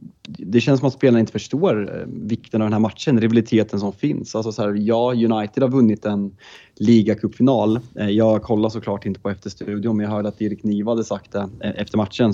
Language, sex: Swedish, male